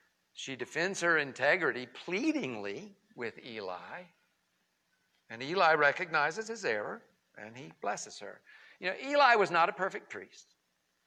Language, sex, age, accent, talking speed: English, male, 60-79, American, 130 wpm